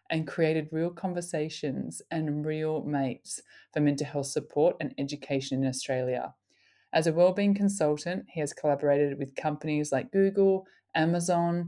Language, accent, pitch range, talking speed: English, Australian, 145-180 Hz, 140 wpm